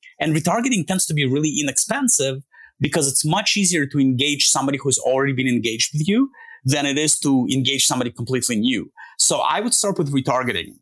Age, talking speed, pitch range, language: 30-49, 190 wpm, 130-180 Hz, English